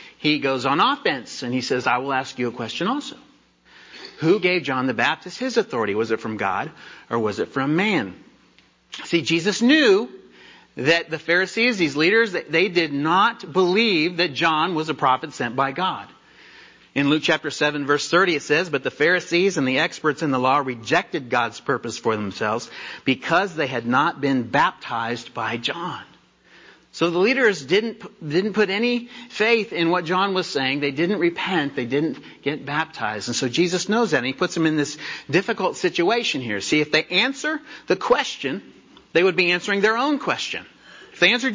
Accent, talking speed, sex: American, 190 wpm, male